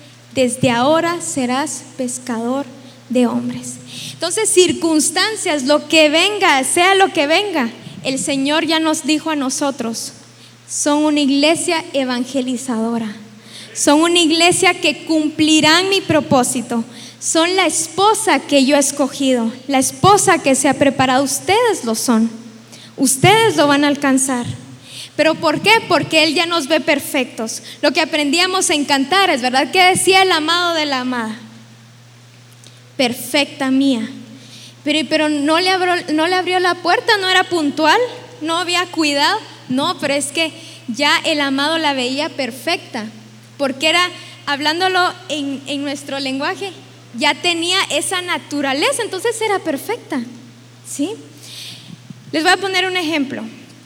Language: English